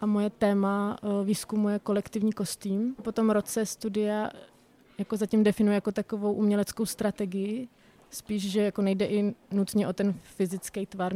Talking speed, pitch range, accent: 145 wpm, 190-205 Hz, native